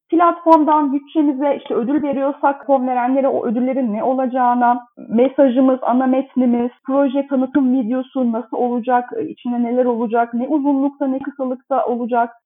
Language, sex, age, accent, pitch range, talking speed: Turkish, female, 30-49, native, 225-270 Hz, 130 wpm